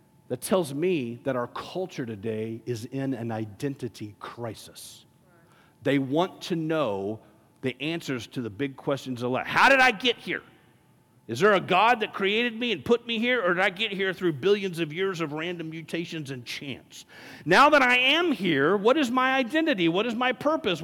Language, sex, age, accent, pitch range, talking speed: English, male, 50-69, American, 130-200 Hz, 195 wpm